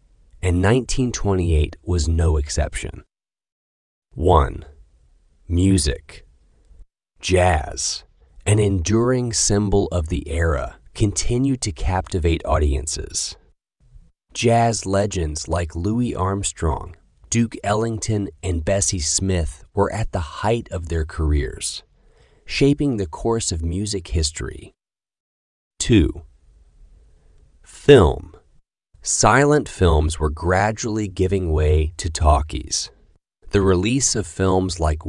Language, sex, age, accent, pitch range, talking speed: English, male, 30-49, American, 75-100 Hz, 95 wpm